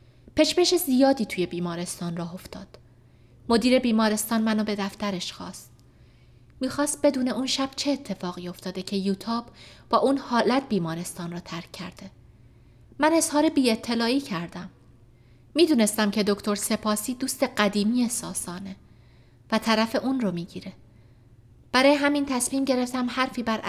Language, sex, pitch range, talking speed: Persian, female, 170-245 Hz, 130 wpm